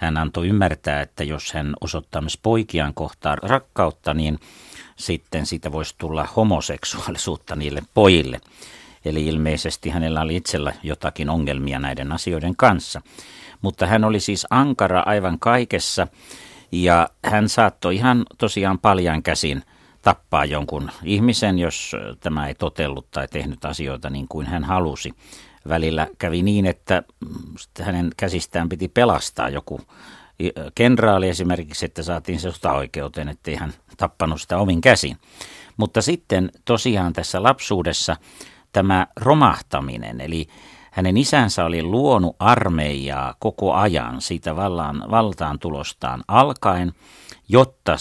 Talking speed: 125 wpm